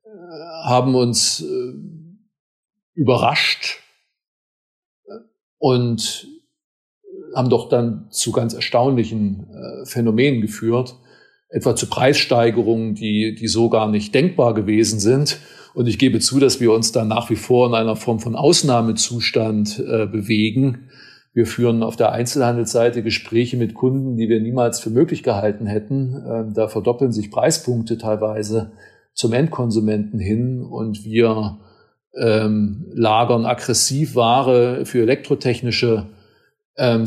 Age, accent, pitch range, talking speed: 50-69, German, 110-130 Hz, 115 wpm